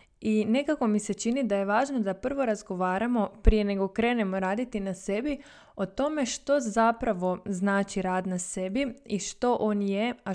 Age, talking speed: 20-39, 175 wpm